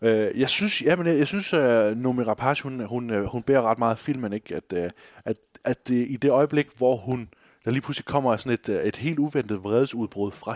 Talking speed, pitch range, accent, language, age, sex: 205 wpm, 105-135 Hz, native, Danish, 20-39, male